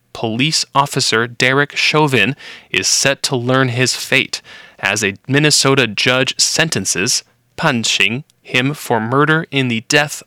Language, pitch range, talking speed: English, 115-145 Hz, 125 wpm